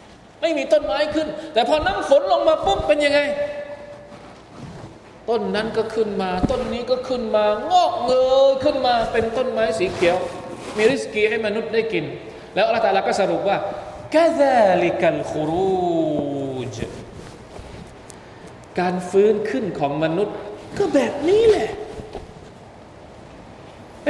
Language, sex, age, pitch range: Thai, male, 20-39, 160-250 Hz